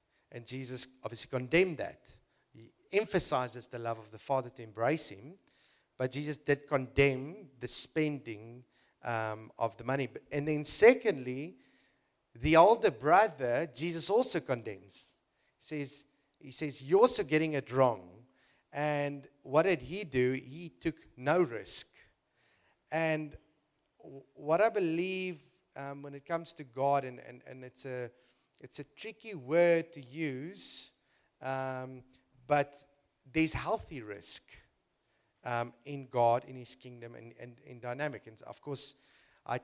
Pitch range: 125-165 Hz